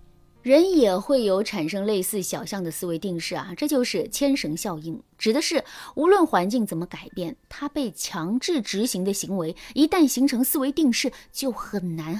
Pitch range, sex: 180-275 Hz, female